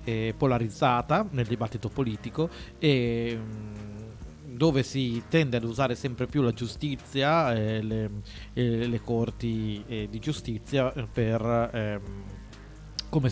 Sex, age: male, 30-49